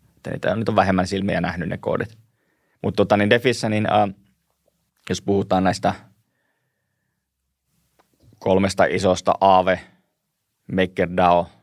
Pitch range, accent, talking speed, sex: 90-100 Hz, native, 110 wpm, male